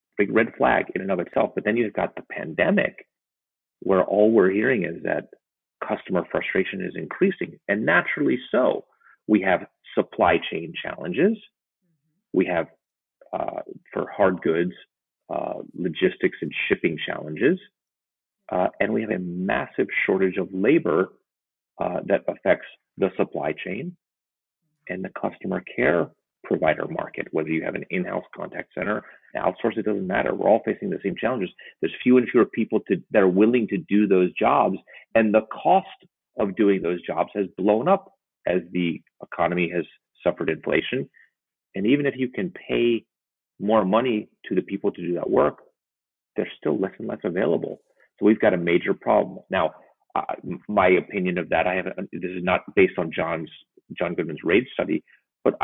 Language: English